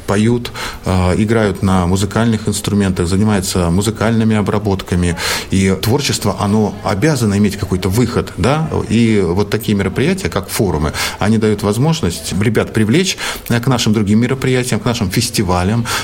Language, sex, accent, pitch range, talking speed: Russian, male, native, 90-110 Hz, 125 wpm